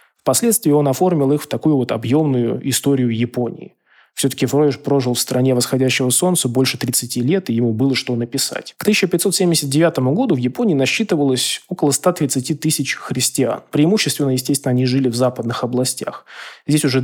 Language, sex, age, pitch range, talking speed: Russian, male, 20-39, 125-150 Hz, 155 wpm